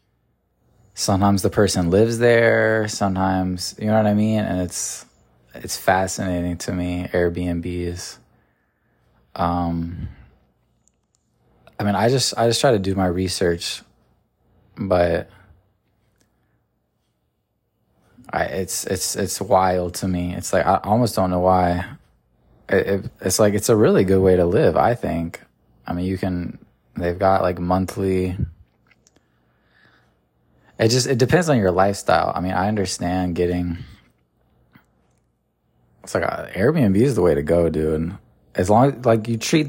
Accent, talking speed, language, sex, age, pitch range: American, 145 wpm, English, male, 20-39, 90-105 Hz